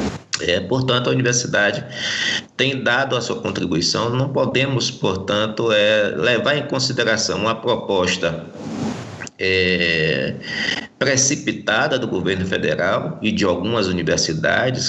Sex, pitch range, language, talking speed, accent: male, 95-135 Hz, Portuguese, 110 wpm, Brazilian